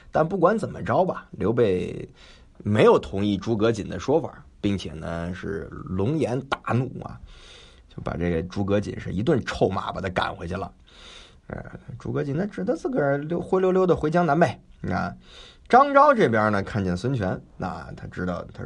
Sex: male